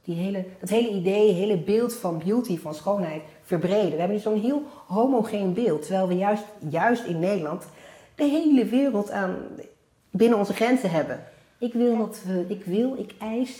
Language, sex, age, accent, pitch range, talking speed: Dutch, female, 40-59, Dutch, 155-205 Hz, 185 wpm